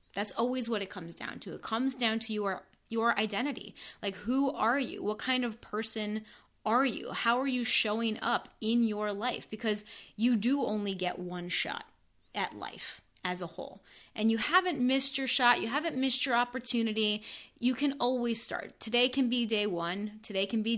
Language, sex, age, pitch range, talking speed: English, female, 30-49, 190-240 Hz, 195 wpm